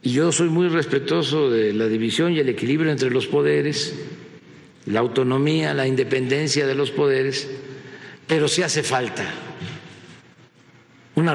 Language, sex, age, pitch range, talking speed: Spanish, male, 60-79, 125-165 Hz, 135 wpm